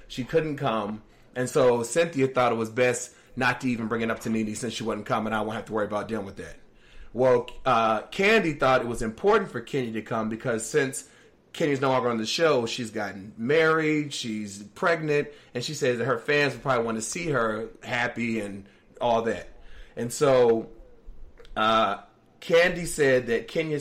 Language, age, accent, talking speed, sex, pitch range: English, 30-49, American, 195 wpm, male, 115-135 Hz